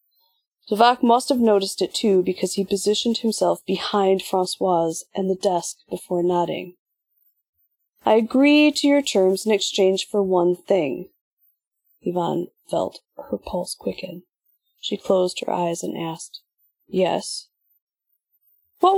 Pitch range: 185-235 Hz